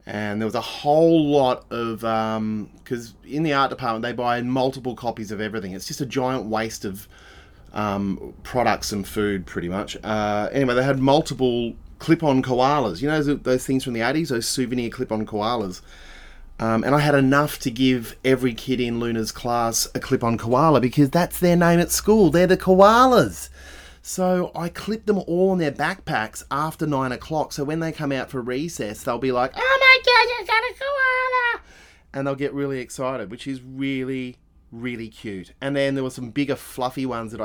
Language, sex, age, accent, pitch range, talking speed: English, male, 30-49, Australian, 110-165 Hz, 200 wpm